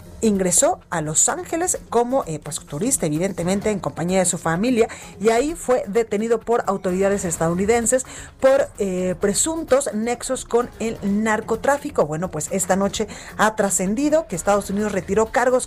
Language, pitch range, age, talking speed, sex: Spanish, 190-245 Hz, 30-49, 145 wpm, female